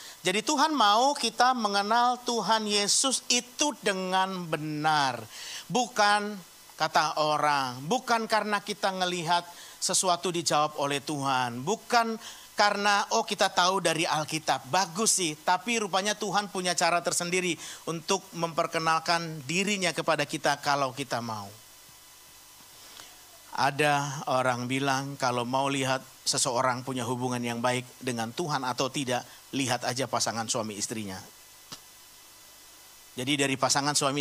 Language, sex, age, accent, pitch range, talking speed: Indonesian, male, 50-69, native, 130-195 Hz, 120 wpm